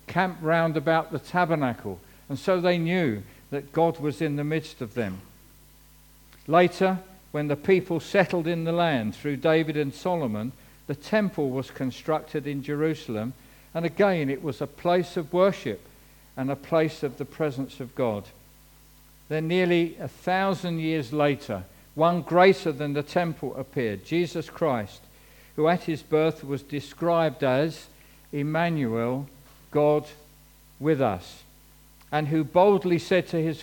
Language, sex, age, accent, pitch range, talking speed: English, male, 50-69, British, 140-170 Hz, 145 wpm